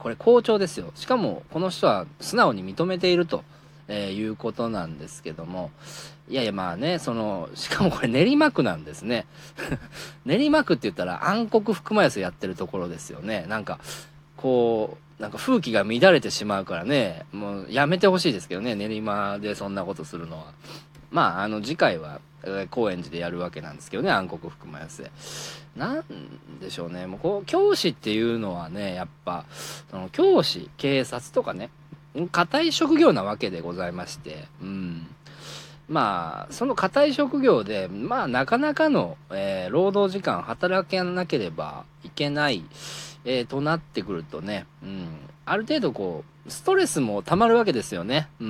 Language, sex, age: Japanese, male, 40-59